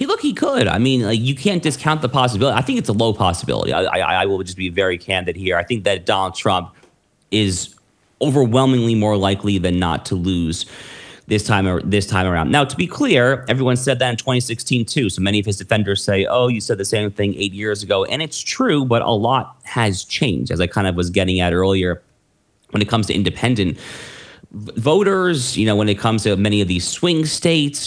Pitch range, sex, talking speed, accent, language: 95-130 Hz, male, 225 wpm, American, English